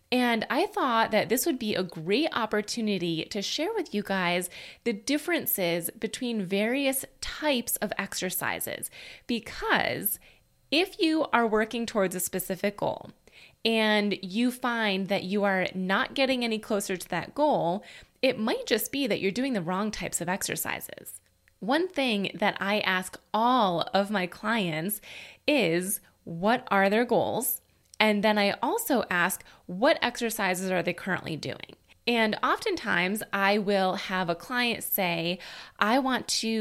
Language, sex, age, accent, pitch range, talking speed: English, female, 20-39, American, 190-245 Hz, 150 wpm